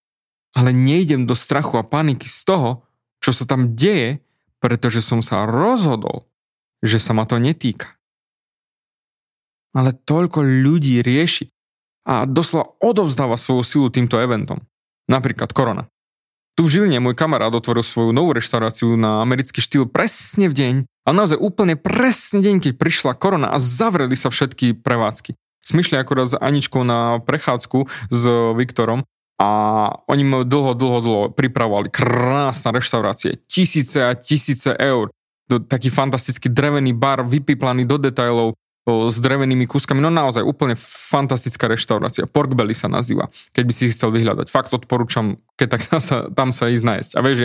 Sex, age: male, 20-39